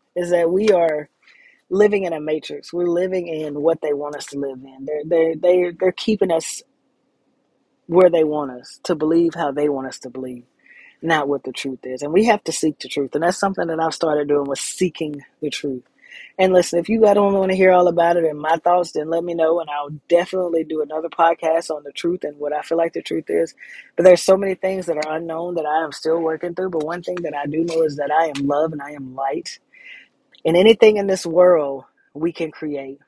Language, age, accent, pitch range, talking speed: English, 30-49, American, 140-170 Hz, 240 wpm